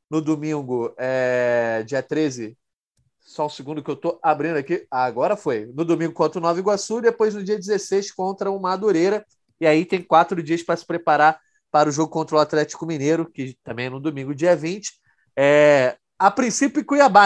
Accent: Brazilian